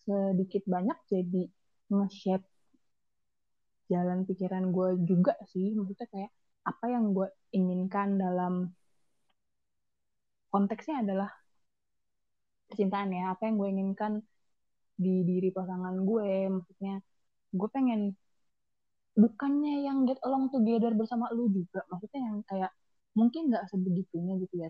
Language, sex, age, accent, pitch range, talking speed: Indonesian, female, 20-39, native, 185-215 Hz, 115 wpm